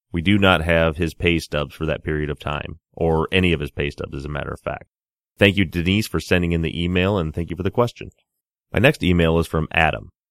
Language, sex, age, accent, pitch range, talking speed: English, male, 30-49, American, 80-90 Hz, 250 wpm